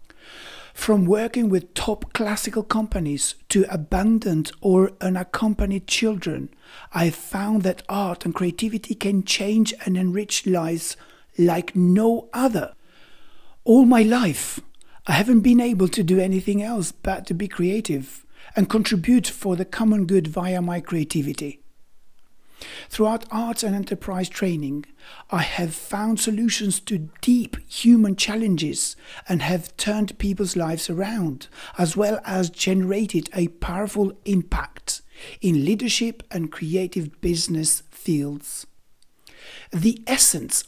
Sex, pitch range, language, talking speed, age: male, 175-220 Hz, English, 120 wpm, 60-79